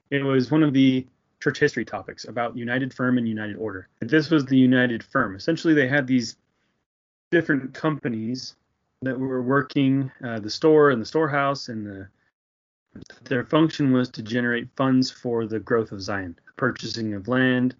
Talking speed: 165 wpm